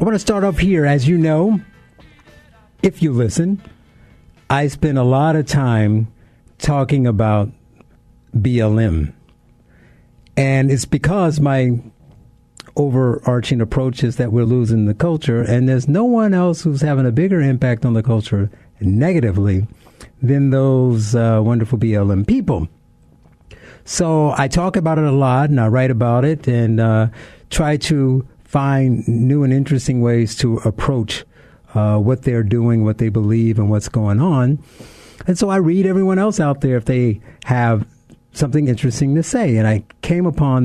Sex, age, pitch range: male, 60-79, 115-155 Hz